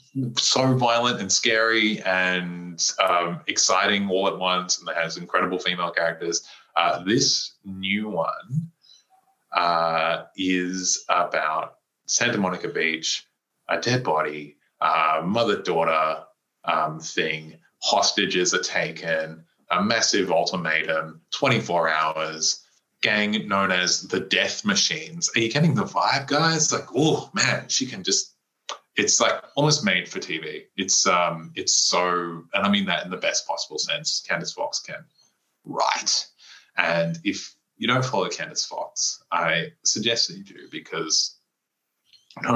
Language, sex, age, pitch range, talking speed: English, male, 20-39, 85-115 Hz, 135 wpm